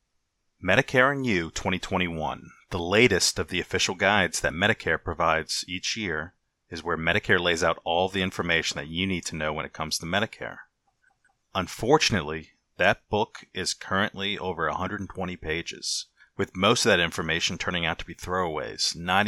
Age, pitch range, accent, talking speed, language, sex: 30-49, 85-110 Hz, American, 160 wpm, English, male